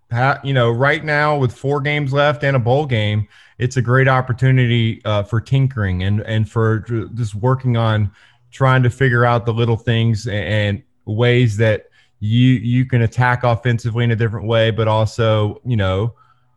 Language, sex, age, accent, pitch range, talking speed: English, male, 30-49, American, 110-125 Hz, 175 wpm